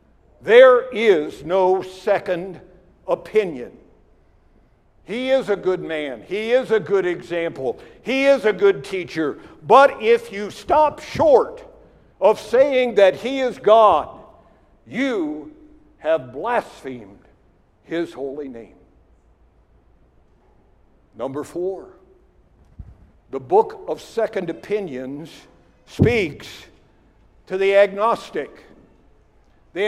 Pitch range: 175-255 Hz